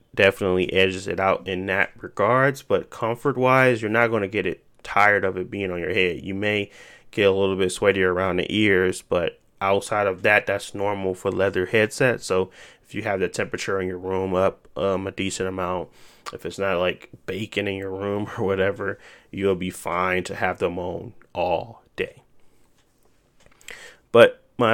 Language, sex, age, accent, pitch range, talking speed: English, male, 20-39, American, 95-115 Hz, 185 wpm